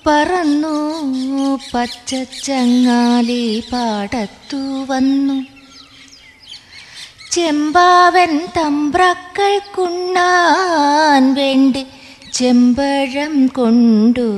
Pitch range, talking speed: 245-305 Hz, 40 wpm